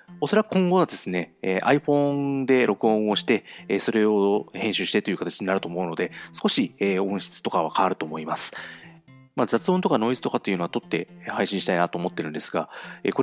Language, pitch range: Japanese, 90-135 Hz